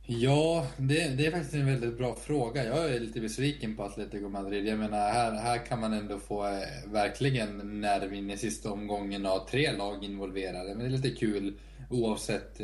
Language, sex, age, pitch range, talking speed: Swedish, male, 20-39, 100-120 Hz, 195 wpm